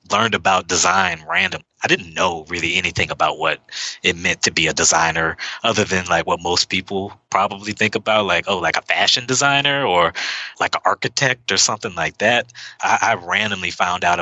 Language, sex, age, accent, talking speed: English, male, 20-39, American, 190 wpm